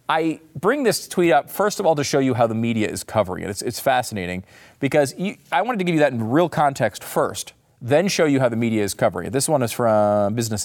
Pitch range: 115-175 Hz